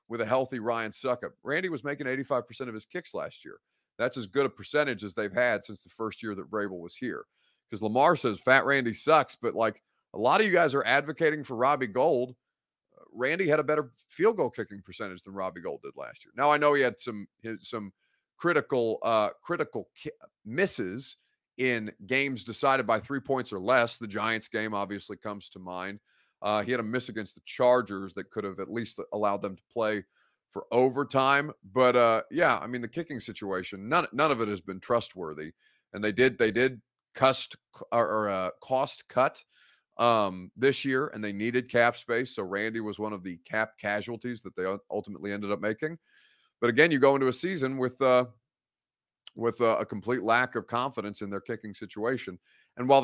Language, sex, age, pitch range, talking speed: English, male, 30-49, 100-130 Hz, 200 wpm